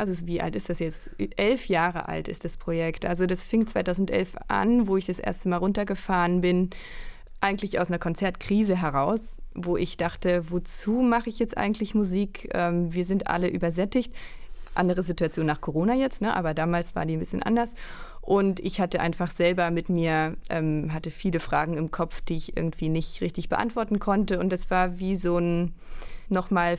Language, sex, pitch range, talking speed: German, female, 175-200 Hz, 180 wpm